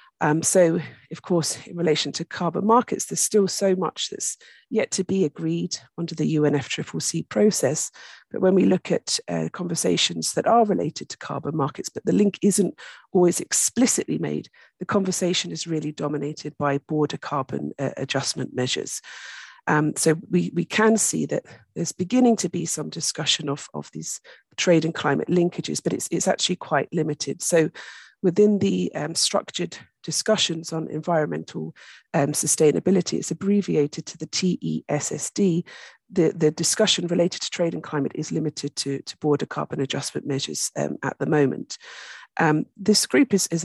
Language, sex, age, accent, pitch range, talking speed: English, female, 40-59, British, 150-195 Hz, 165 wpm